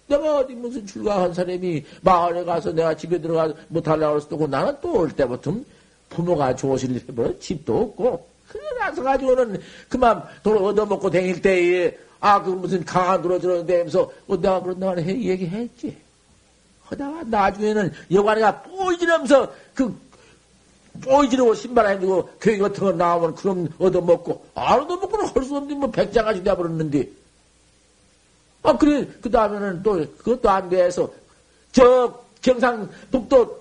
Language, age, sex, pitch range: Korean, 50-69, male, 180-275 Hz